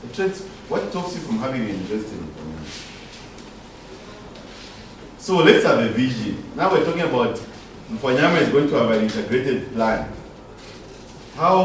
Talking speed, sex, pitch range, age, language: 135 wpm, male, 105-145 Hz, 40-59, English